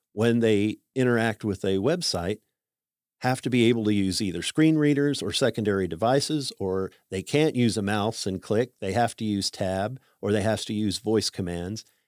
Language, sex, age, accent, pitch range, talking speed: English, male, 50-69, American, 110-135 Hz, 190 wpm